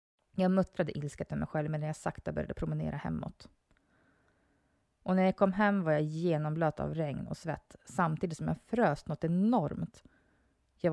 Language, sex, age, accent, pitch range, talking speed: Swedish, female, 30-49, native, 155-195 Hz, 175 wpm